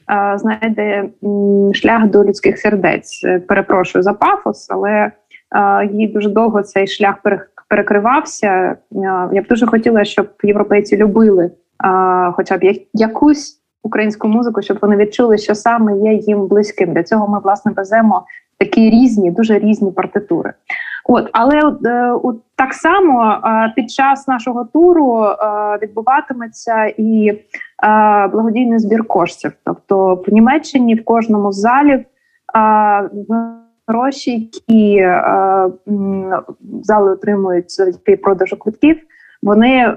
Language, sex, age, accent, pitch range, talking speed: Ukrainian, female, 20-39, native, 195-230 Hz, 115 wpm